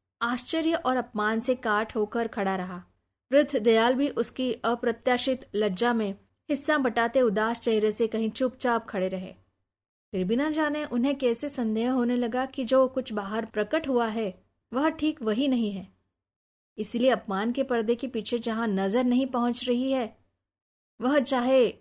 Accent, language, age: native, Hindi, 20-39